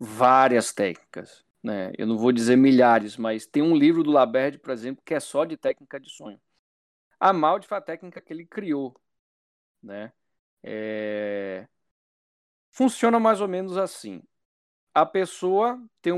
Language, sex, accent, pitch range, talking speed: Portuguese, male, Brazilian, 115-190 Hz, 150 wpm